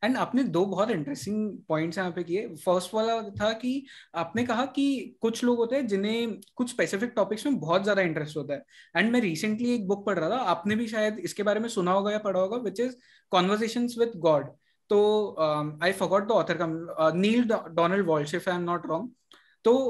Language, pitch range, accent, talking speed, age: Hindi, 175-235 Hz, native, 185 wpm, 20-39